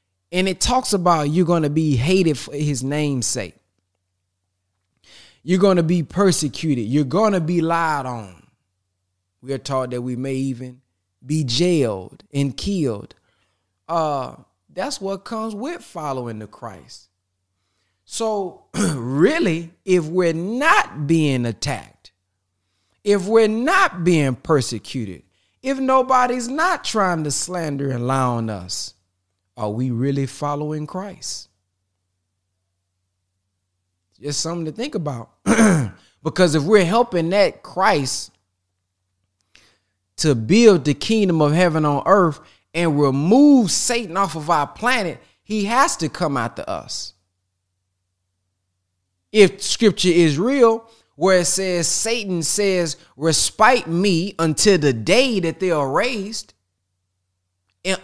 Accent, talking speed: American, 125 wpm